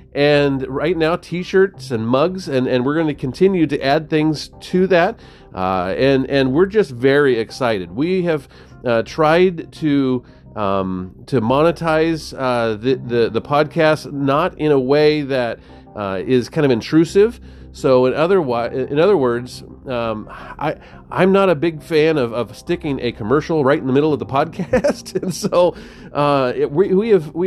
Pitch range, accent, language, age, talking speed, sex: 120-160 Hz, American, English, 40-59, 175 wpm, male